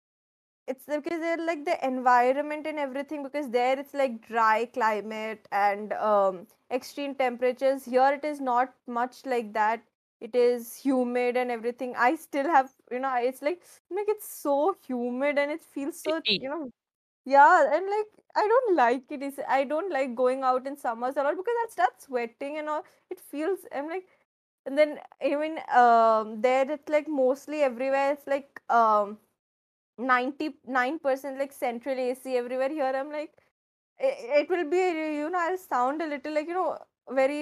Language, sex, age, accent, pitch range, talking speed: Hindi, female, 20-39, native, 250-305 Hz, 180 wpm